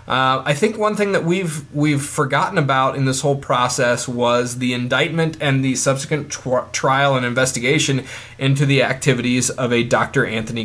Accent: American